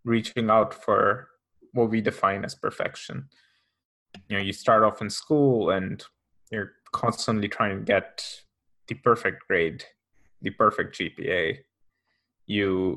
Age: 20-39